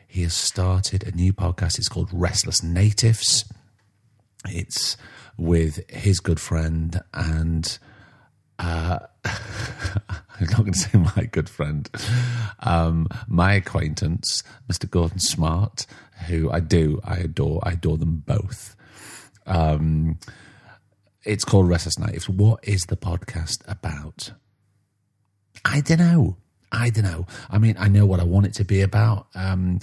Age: 40-59